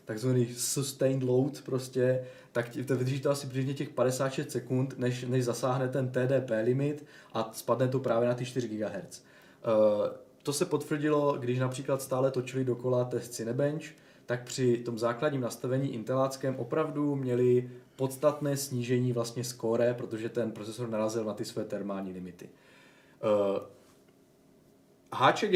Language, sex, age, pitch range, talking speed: Czech, male, 20-39, 115-135 Hz, 145 wpm